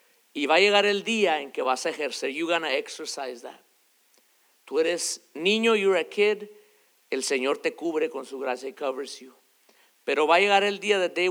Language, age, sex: English, 50-69, male